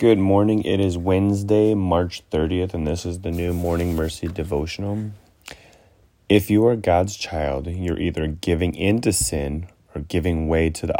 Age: 30-49